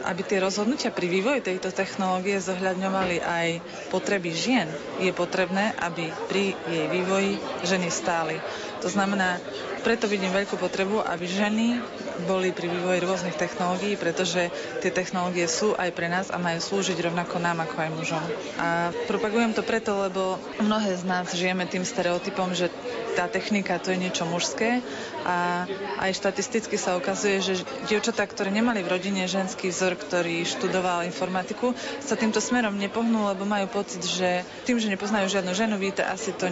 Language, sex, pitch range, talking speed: Slovak, female, 180-205 Hz, 160 wpm